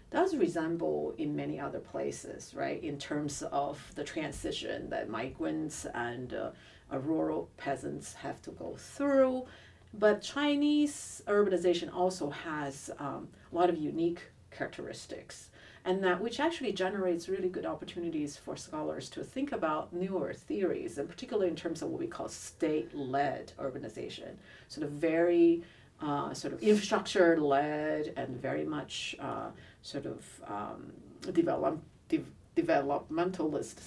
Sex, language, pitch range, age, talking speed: female, English, 150-215 Hz, 50-69, 130 wpm